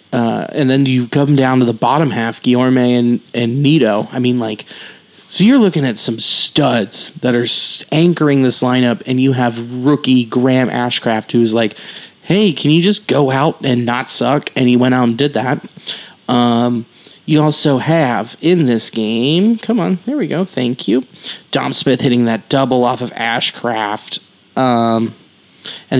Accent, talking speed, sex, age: American, 175 wpm, male, 30-49